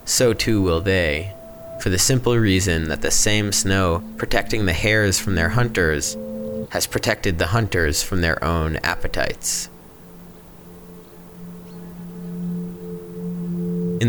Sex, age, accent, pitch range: male, 20-39, American, 85-105 Hz